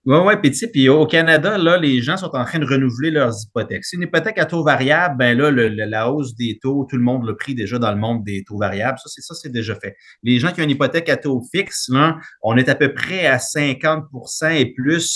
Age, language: 30-49, French